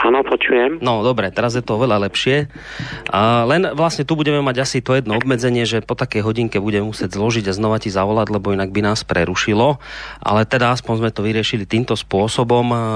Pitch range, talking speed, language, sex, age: 105-130 Hz, 190 wpm, Slovak, male, 30-49